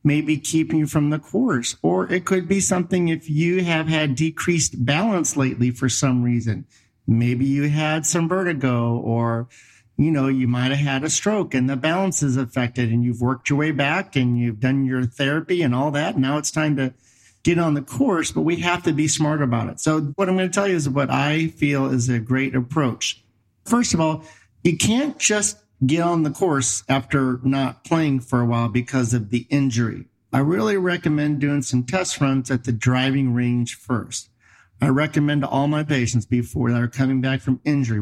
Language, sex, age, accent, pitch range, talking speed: English, male, 50-69, American, 125-165 Hz, 200 wpm